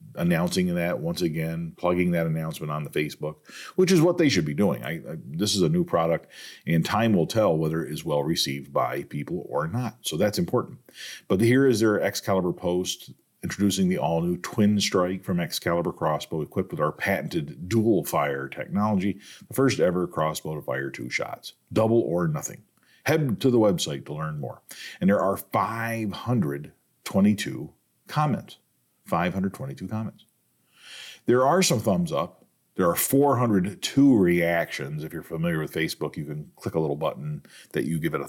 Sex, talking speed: male, 175 wpm